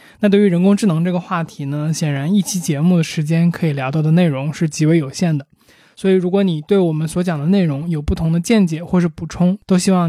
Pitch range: 160-195 Hz